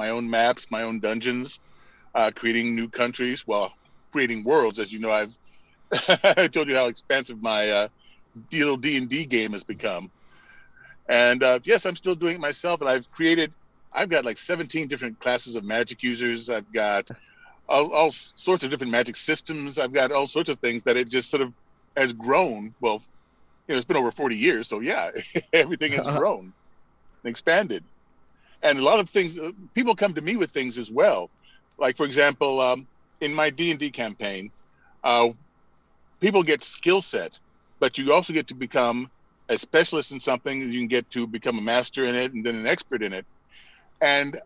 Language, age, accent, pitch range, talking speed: English, 40-59, American, 115-160 Hz, 190 wpm